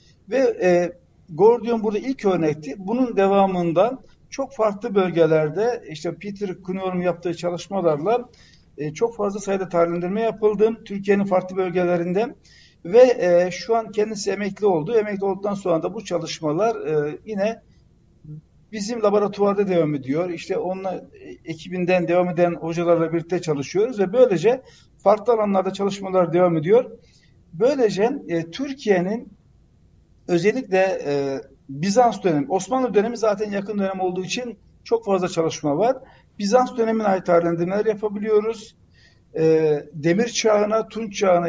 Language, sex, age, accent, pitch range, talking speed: Turkish, male, 60-79, native, 170-220 Hz, 125 wpm